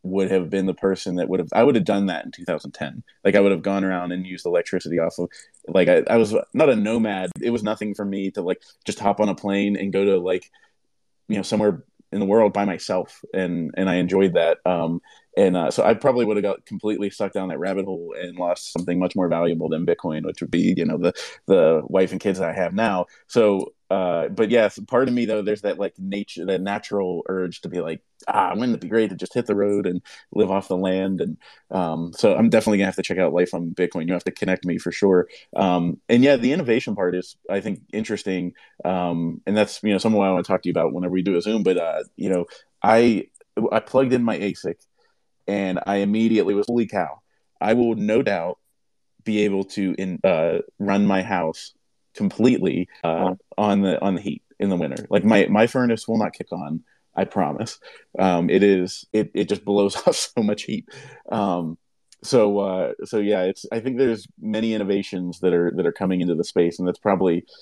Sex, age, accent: male, 20-39, American